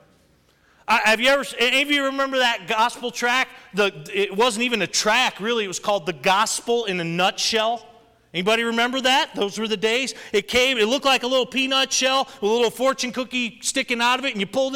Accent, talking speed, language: American, 210 wpm, English